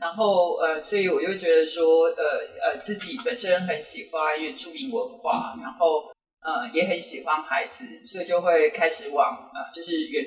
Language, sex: Chinese, female